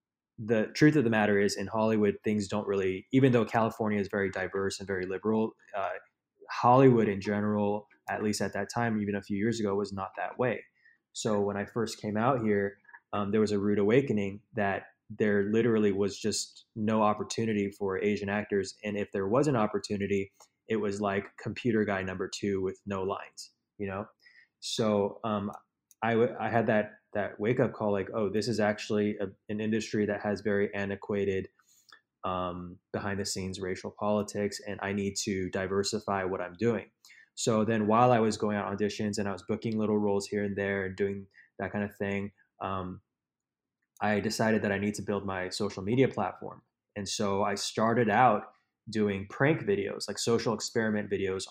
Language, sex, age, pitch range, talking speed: English, male, 20-39, 100-110 Hz, 185 wpm